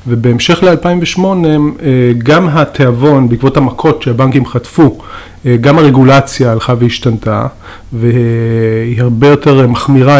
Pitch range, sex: 120-145 Hz, male